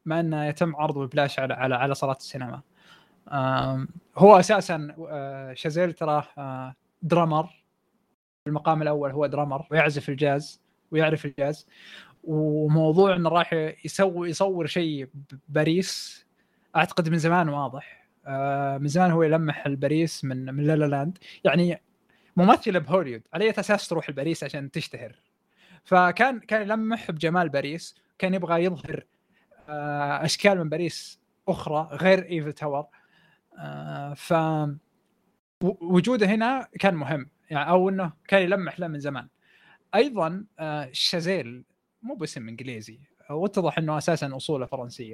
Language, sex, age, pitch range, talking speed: Arabic, male, 20-39, 145-185 Hz, 120 wpm